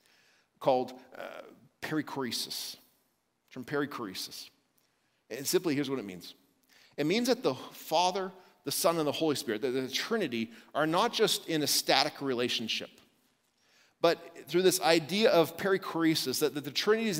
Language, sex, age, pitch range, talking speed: English, male, 40-59, 140-180 Hz, 150 wpm